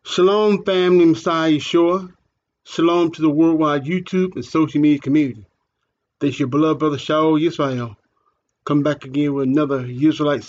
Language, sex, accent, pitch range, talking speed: English, male, American, 140-170 Hz, 150 wpm